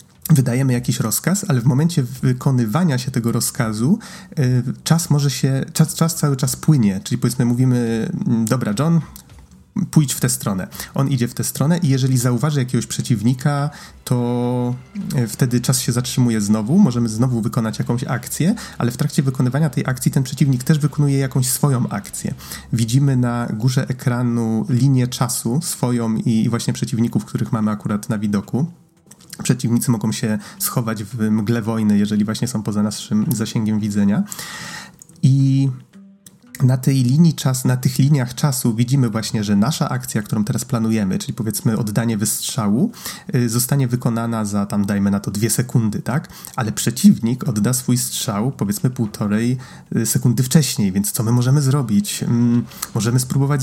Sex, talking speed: male, 155 wpm